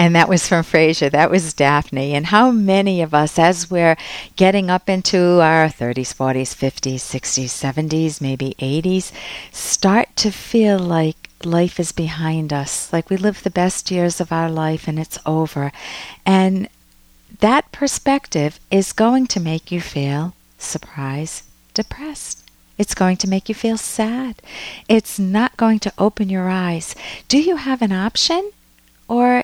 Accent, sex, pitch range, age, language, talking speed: American, female, 160-215 Hz, 50-69, English, 155 wpm